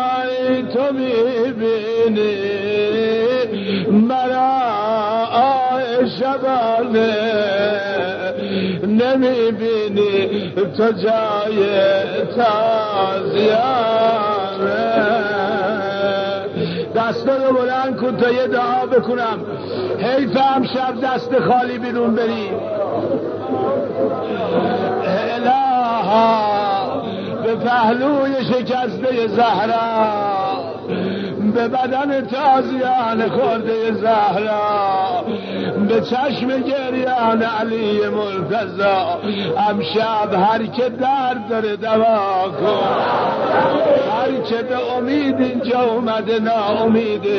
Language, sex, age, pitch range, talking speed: Persian, male, 60-79, 210-255 Hz, 65 wpm